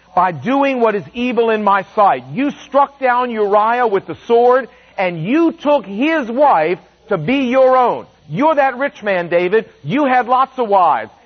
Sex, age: male, 50-69